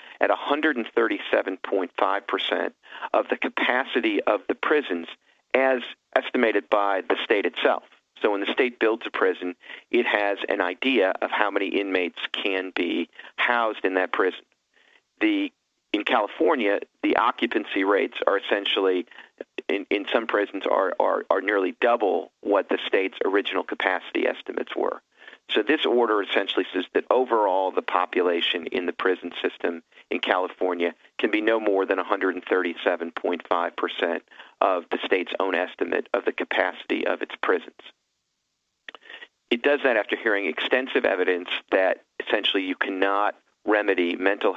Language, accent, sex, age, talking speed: English, American, male, 50-69, 140 wpm